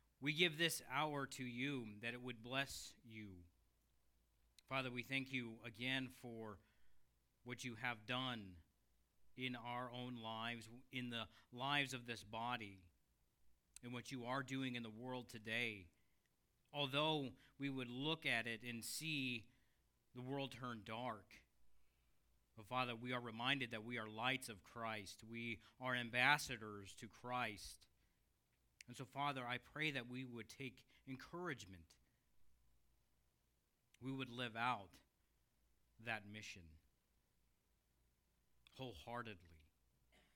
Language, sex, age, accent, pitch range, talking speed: English, male, 40-59, American, 85-125 Hz, 125 wpm